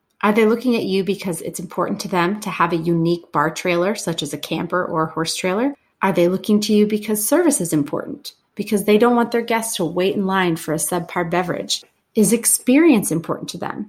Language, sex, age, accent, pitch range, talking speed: English, female, 30-49, American, 170-215 Hz, 225 wpm